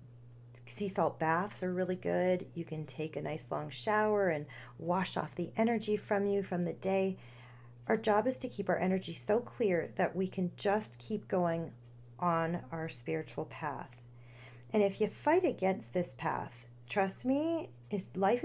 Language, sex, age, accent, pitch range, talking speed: English, female, 40-59, American, 125-200 Hz, 170 wpm